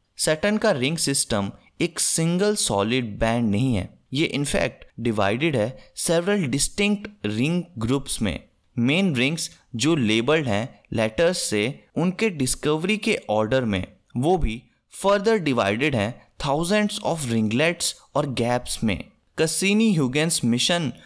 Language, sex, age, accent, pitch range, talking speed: Hindi, male, 20-39, native, 110-175 Hz, 125 wpm